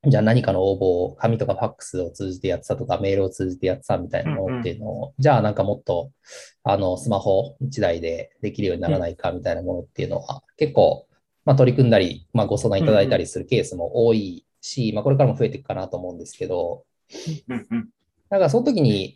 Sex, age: male, 20-39